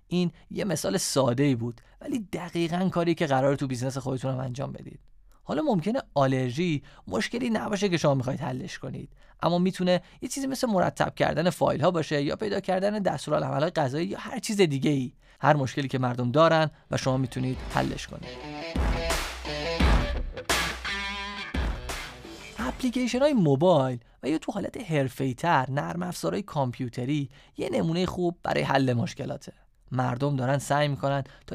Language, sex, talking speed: Persian, male, 150 wpm